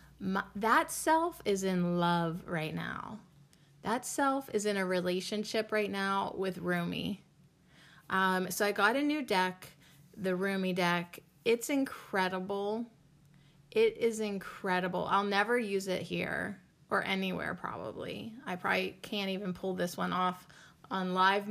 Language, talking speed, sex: English, 135 wpm, female